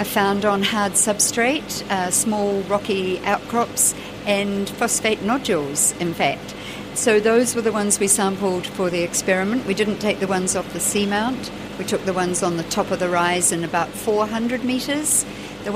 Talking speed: 180 wpm